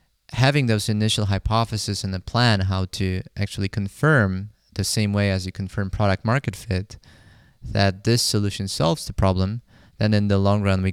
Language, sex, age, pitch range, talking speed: English, male, 20-39, 95-110 Hz, 175 wpm